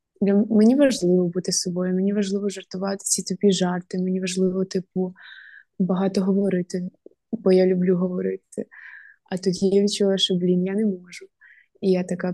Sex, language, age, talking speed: female, Ukrainian, 20-39, 155 wpm